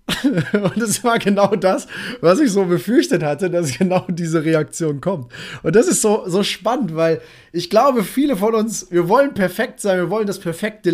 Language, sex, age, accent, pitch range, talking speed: German, male, 30-49, German, 155-185 Hz, 190 wpm